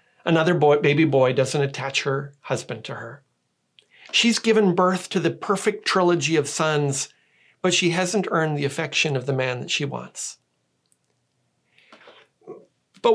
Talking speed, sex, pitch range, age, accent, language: 140 wpm, male, 150-215 Hz, 40-59, American, English